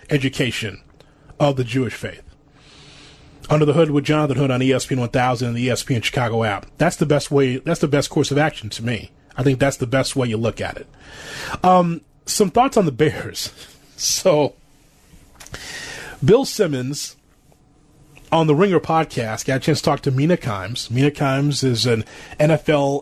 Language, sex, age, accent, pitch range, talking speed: English, male, 30-49, American, 130-150 Hz, 175 wpm